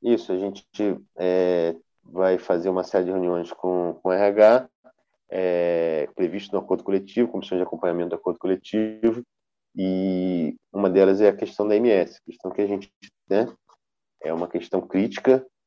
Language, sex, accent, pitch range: Portuguese, male, Brazilian, 85-100 Hz